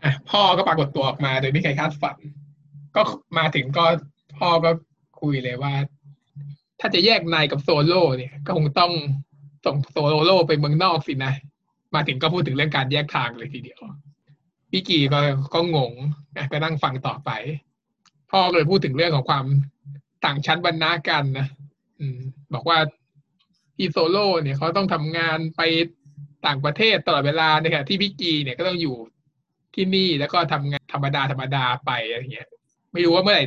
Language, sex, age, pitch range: Thai, male, 20-39, 140-165 Hz